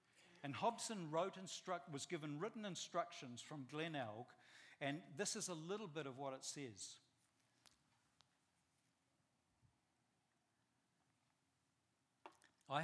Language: English